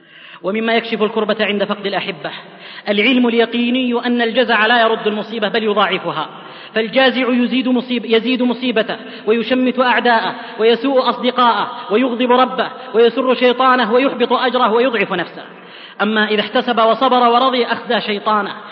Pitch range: 200-245 Hz